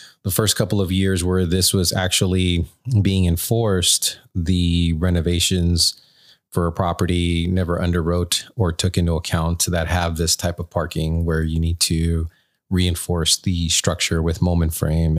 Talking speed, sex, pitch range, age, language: 150 wpm, male, 85-95 Hz, 30-49, English